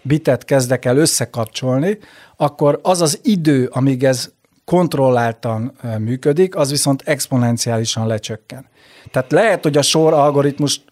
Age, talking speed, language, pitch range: 60-79, 115 wpm, Hungarian, 125-150 Hz